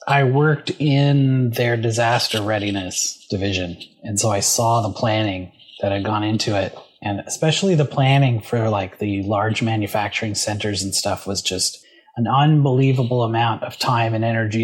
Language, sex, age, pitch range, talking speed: English, male, 30-49, 110-130 Hz, 160 wpm